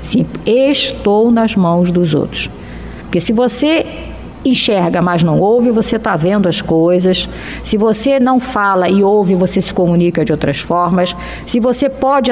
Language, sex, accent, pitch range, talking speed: Portuguese, female, Brazilian, 185-245 Hz, 160 wpm